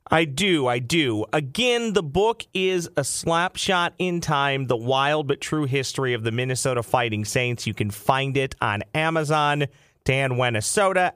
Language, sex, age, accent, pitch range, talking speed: English, male, 40-59, American, 120-155 Hz, 160 wpm